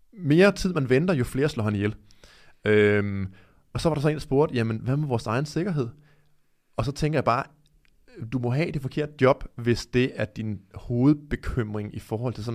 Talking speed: 205 wpm